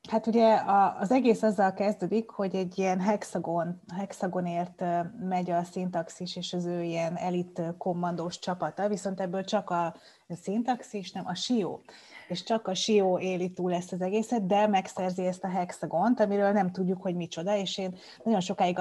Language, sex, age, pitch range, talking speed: Hungarian, female, 30-49, 170-195 Hz, 165 wpm